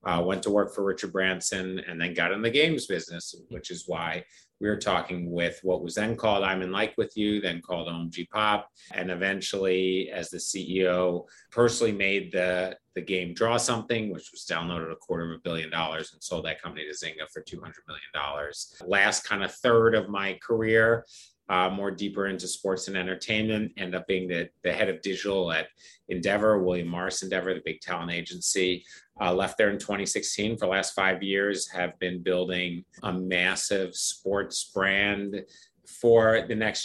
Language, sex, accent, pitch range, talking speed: English, male, American, 90-105 Hz, 185 wpm